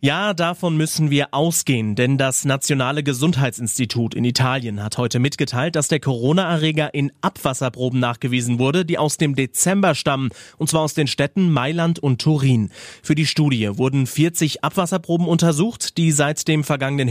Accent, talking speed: German, 160 wpm